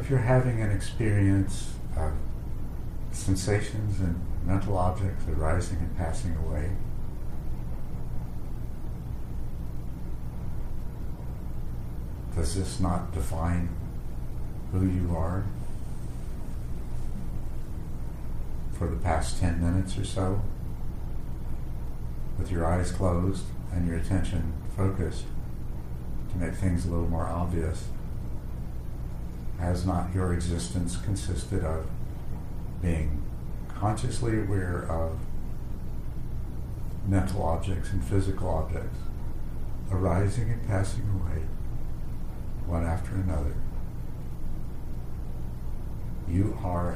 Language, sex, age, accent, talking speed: English, male, 70-89, American, 85 wpm